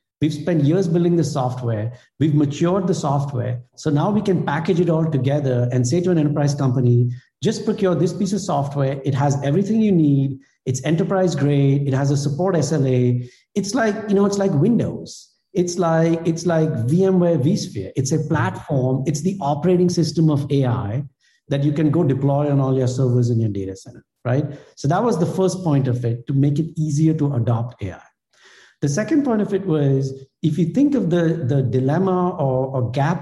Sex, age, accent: male, 50-69, Indian